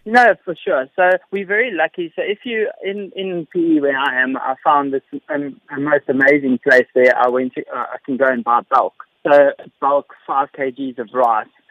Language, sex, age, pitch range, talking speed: English, male, 20-39, 135-165 Hz, 205 wpm